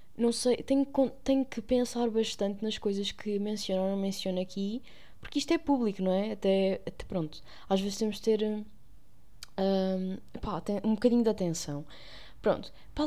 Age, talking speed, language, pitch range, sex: 10-29, 165 wpm, Portuguese, 190-235 Hz, female